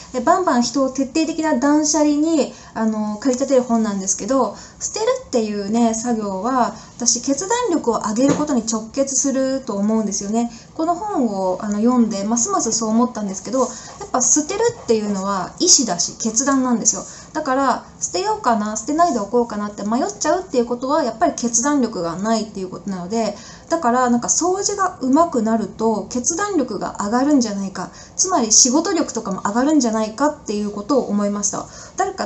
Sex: female